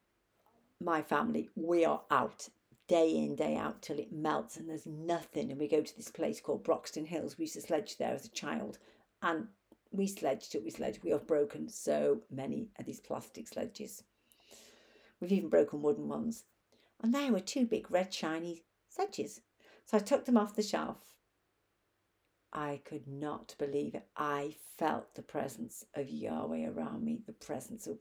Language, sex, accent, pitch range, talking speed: English, female, British, 155-225 Hz, 180 wpm